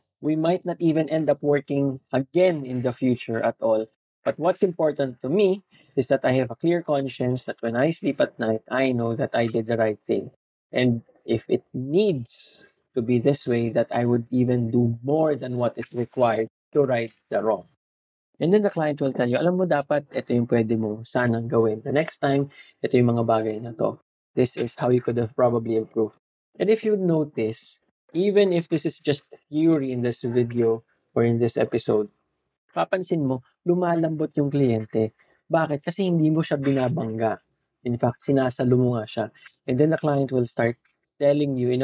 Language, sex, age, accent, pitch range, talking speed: English, male, 20-39, Filipino, 120-155 Hz, 200 wpm